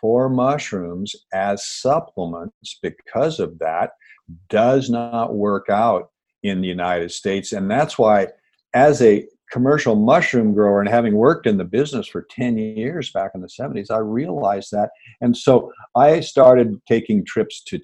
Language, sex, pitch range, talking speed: English, male, 100-155 Hz, 155 wpm